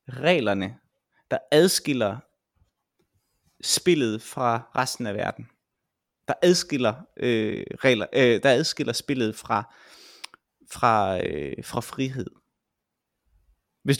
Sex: male